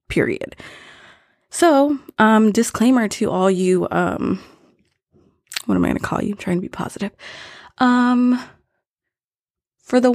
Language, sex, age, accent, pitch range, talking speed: English, female, 20-39, American, 180-230 Hz, 135 wpm